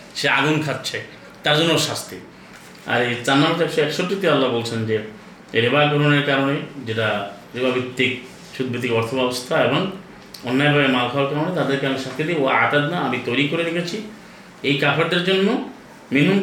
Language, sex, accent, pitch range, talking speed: Bengali, male, native, 130-180 Hz, 150 wpm